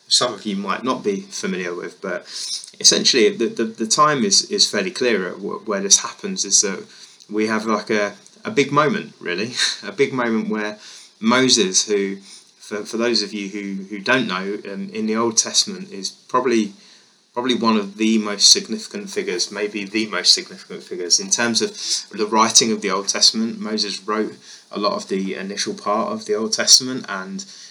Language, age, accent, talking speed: English, 20-39, British, 190 wpm